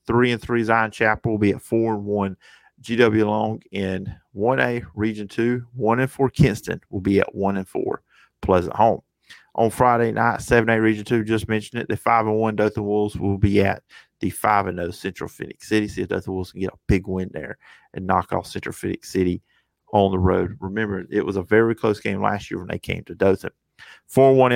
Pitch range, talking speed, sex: 100-120 Hz, 185 wpm, male